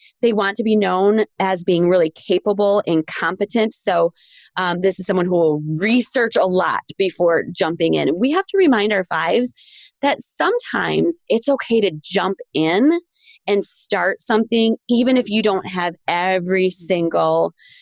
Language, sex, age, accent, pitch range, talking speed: English, female, 20-39, American, 180-240 Hz, 160 wpm